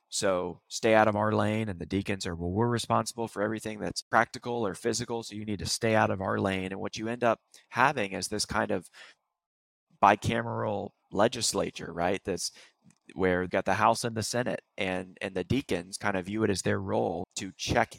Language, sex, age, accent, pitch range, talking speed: English, male, 20-39, American, 95-110 Hz, 210 wpm